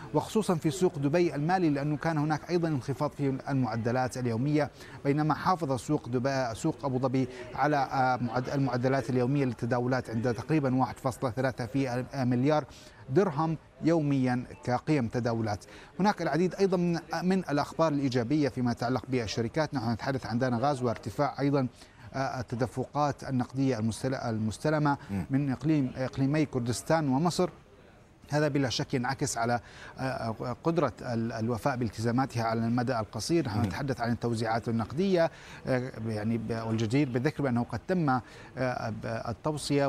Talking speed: 120 wpm